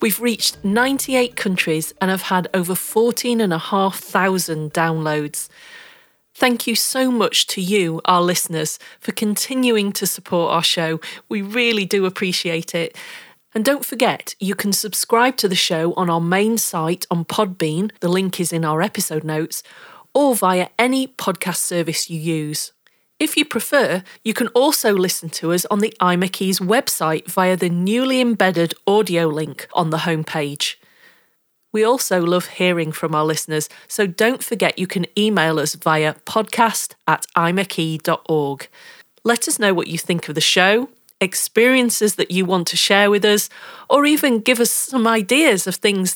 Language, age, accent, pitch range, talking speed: English, 40-59, British, 165-220 Hz, 165 wpm